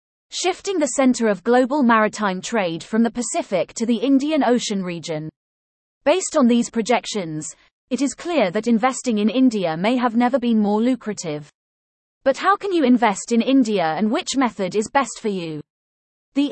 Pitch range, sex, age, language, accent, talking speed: 200-270 Hz, female, 30-49, English, British, 170 wpm